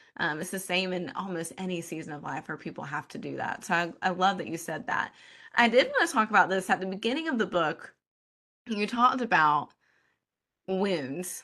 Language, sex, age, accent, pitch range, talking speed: English, female, 20-39, American, 170-215 Hz, 215 wpm